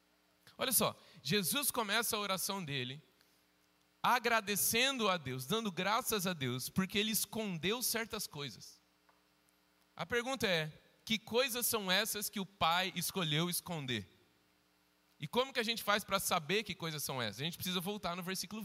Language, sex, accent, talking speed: Portuguese, male, Brazilian, 160 wpm